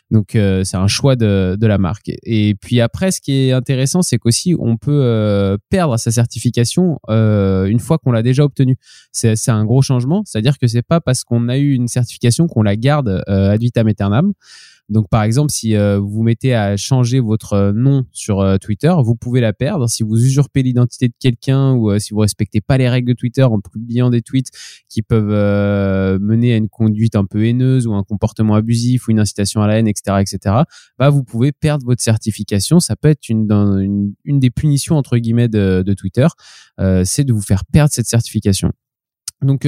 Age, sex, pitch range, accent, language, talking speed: 20-39, male, 105-135 Hz, French, French, 210 wpm